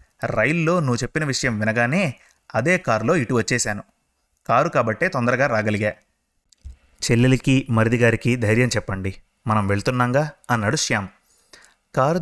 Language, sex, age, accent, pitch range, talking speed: Telugu, male, 30-49, native, 110-140 Hz, 110 wpm